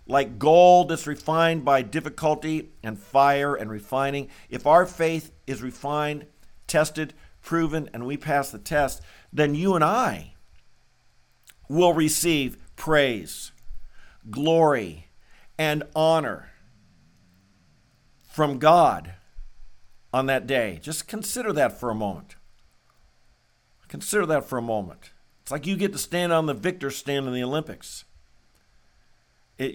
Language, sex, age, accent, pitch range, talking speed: English, male, 50-69, American, 120-155 Hz, 125 wpm